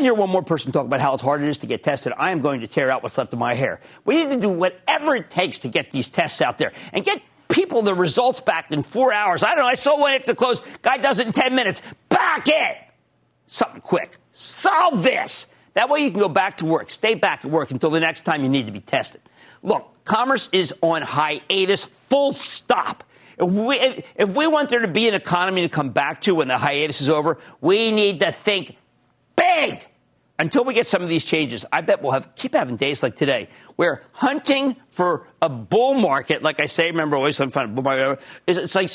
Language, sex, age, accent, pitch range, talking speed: English, male, 50-69, American, 150-240 Hz, 230 wpm